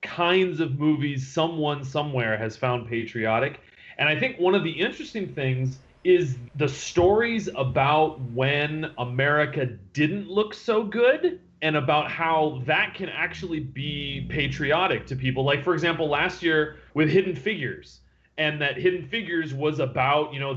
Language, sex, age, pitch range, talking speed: English, male, 30-49, 130-165 Hz, 150 wpm